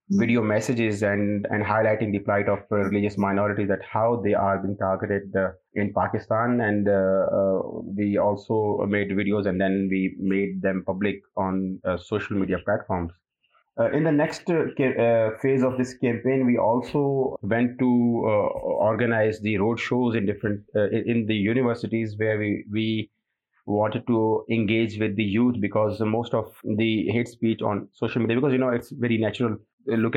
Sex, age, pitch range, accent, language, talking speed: male, 30-49, 100-115 Hz, Indian, English, 170 wpm